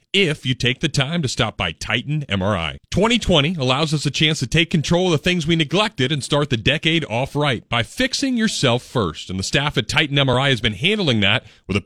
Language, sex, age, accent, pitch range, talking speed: English, male, 40-59, American, 120-170 Hz, 230 wpm